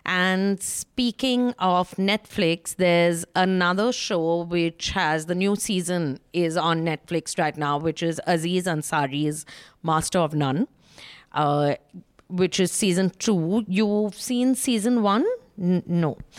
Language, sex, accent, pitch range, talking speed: English, female, Indian, 170-205 Hz, 125 wpm